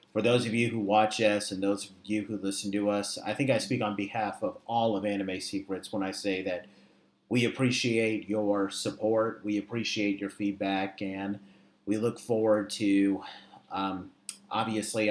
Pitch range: 100-110 Hz